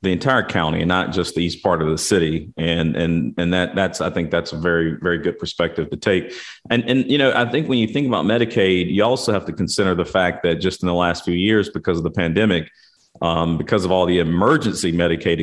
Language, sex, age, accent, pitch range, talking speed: English, male, 40-59, American, 85-105 Hz, 245 wpm